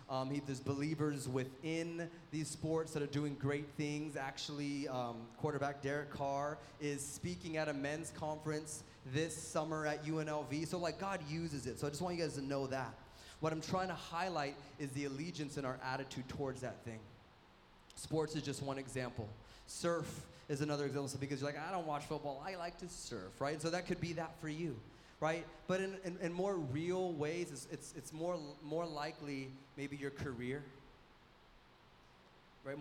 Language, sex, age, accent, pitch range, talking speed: English, male, 20-39, American, 135-160 Hz, 185 wpm